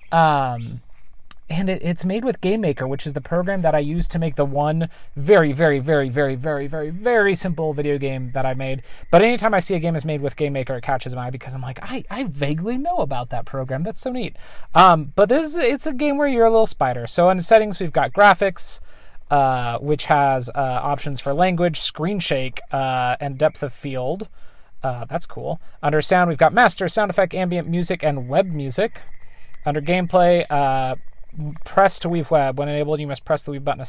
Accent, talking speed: American, 220 wpm